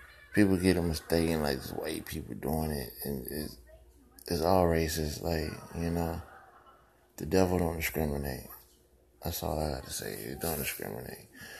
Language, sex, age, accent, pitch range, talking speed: English, male, 20-39, American, 75-90 Hz, 160 wpm